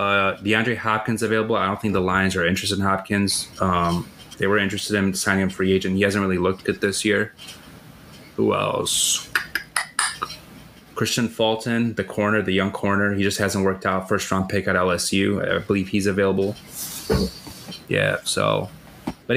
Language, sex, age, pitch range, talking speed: English, male, 20-39, 95-110 Hz, 170 wpm